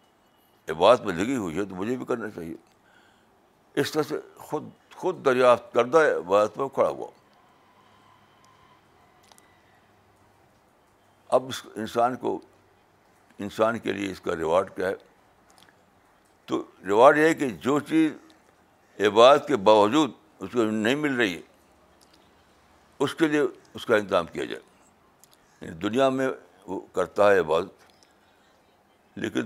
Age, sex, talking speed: 60-79, male, 130 wpm